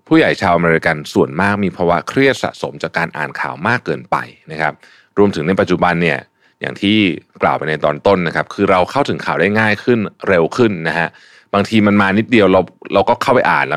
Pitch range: 80-110 Hz